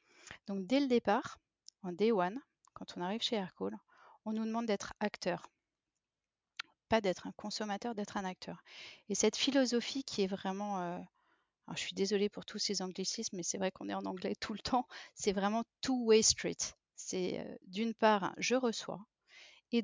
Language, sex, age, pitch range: French, female, 40-59, 180-215 Hz